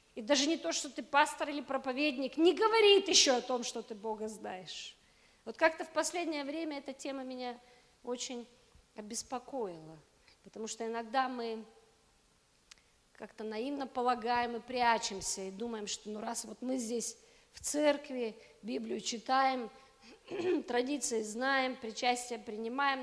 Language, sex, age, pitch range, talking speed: Russian, female, 40-59, 225-285 Hz, 140 wpm